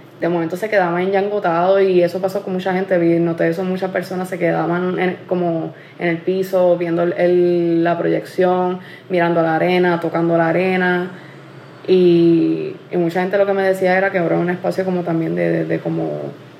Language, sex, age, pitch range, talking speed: Spanish, female, 20-39, 170-185 Hz, 195 wpm